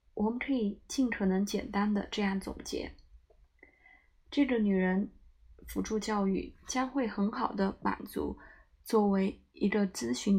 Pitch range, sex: 195-225 Hz, female